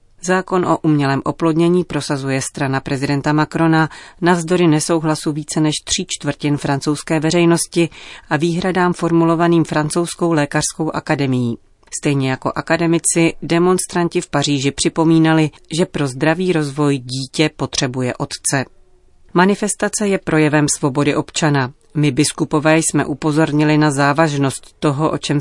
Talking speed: 120 wpm